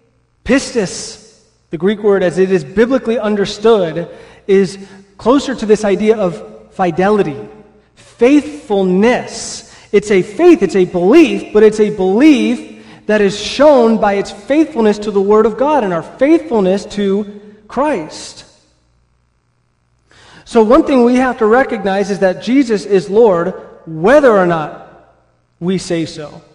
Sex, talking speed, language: male, 140 wpm, English